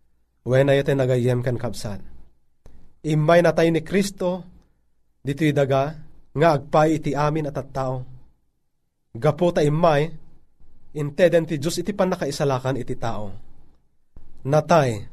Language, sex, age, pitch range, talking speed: Filipino, male, 30-49, 120-155 Hz, 110 wpm